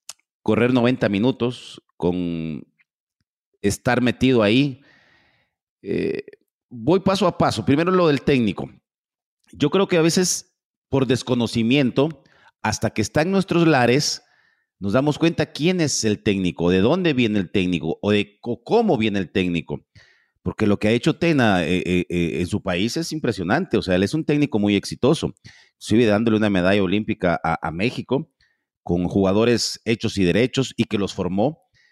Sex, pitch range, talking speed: male, 105-150 Hz, 160 wpm